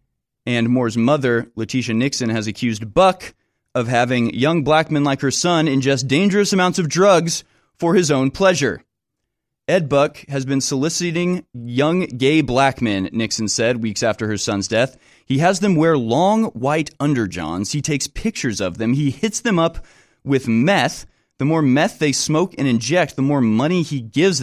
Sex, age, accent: male, 30-49, American